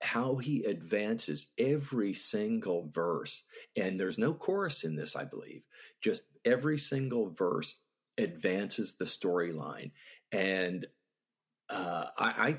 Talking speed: 120 wpm